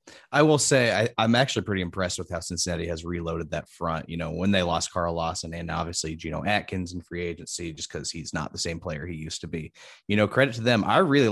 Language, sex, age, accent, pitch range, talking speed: English, male, 20-39, American, 85-100 Hz, 250 wpm